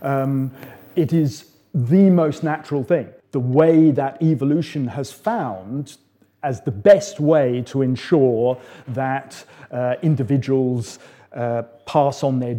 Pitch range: 130-170 Hz